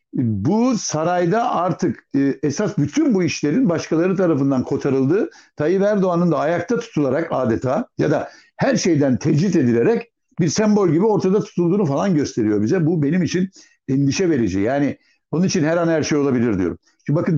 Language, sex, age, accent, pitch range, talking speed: Turkish, male, 60-79, native, 120-180 Hz, 160 wpm